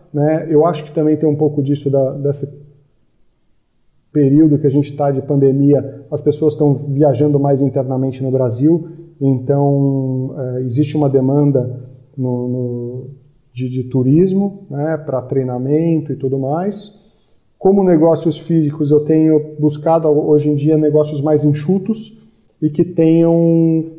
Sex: male